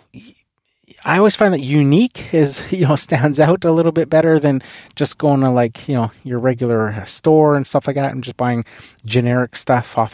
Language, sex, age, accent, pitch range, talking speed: English, male, 20-39, American, 125-155 Hz, 200 wpm